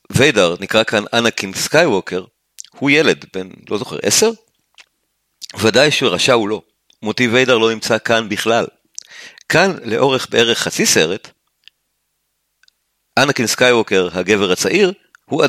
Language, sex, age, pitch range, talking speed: Hebrew, male, 40-59, 110-140 Hz, 120 wpm